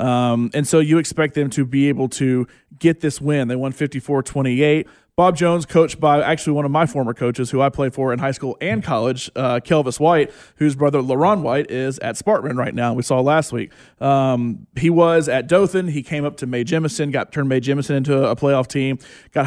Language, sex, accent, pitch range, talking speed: English, male, American, 125-150 Hz, 220 wpm